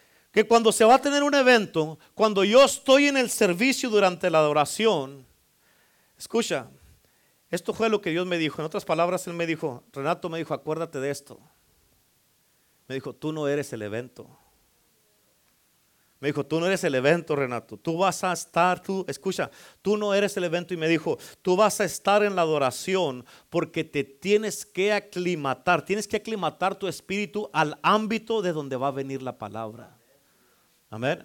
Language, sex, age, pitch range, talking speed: Spanish, male, 40-59, 140-195 Hz, 180 wpm